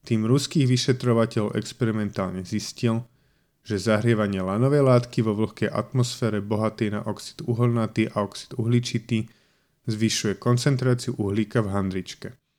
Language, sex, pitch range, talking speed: Slovak, male, 110-125 Hz, 115 wpm